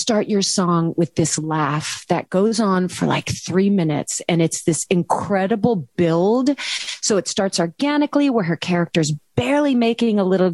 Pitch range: 175-260 Hz